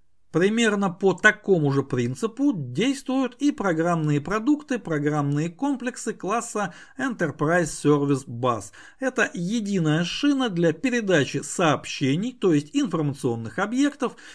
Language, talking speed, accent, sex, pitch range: Russian, 105 wpm, native, male, 140-225 Hz